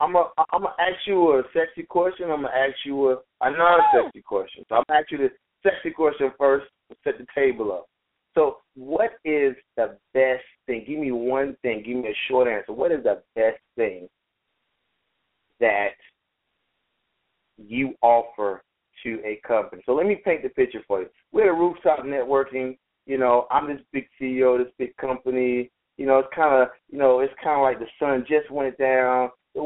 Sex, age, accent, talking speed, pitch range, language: male, 30-49, American, 185 wpm, 130-175 Hz, English